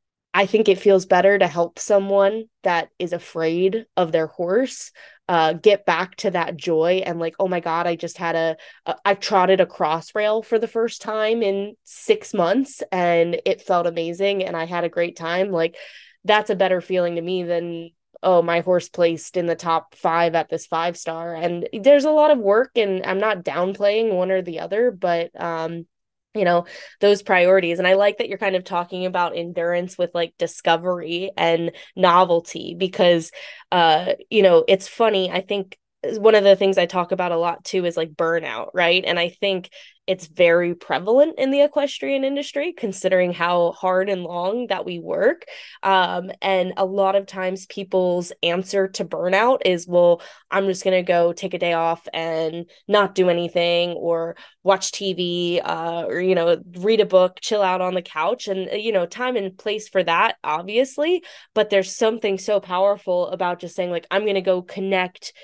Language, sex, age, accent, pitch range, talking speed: English, female, 20-39, American, 170-200 Hz, 195 wpm